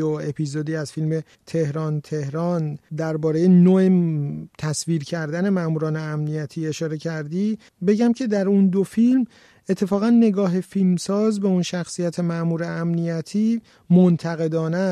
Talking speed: 115 wpm